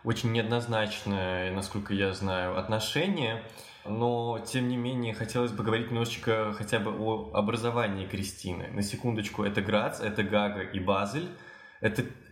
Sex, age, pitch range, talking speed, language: male, 20-39, 105-125 Hz, 135 wpm, Russian